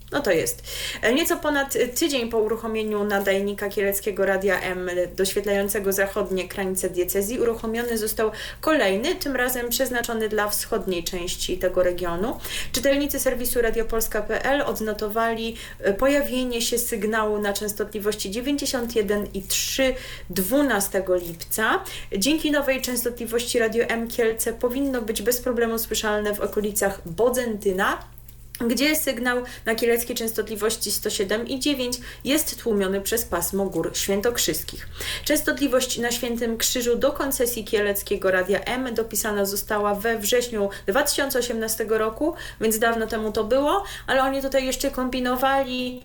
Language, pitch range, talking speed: Polish, 210-255 Hz, 120 wpm